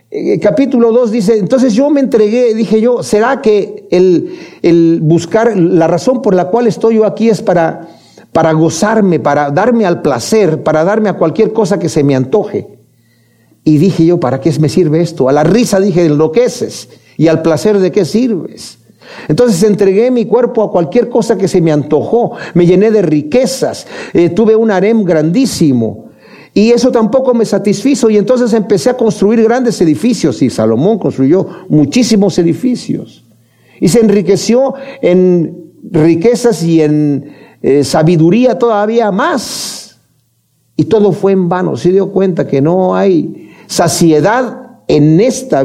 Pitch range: 165-230 Hz